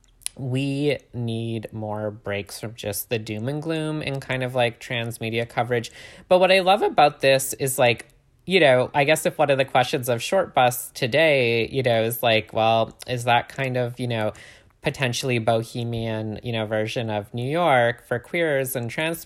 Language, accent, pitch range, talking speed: English, American, 110-135 Hz, 190 wpm